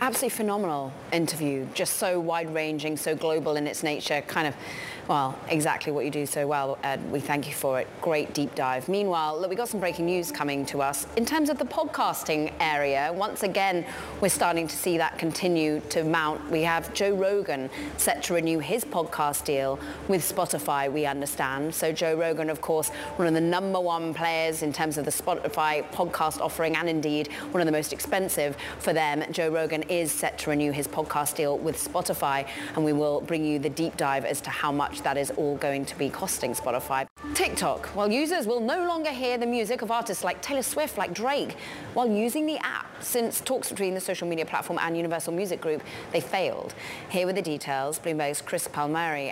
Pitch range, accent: 150-200 Hz, British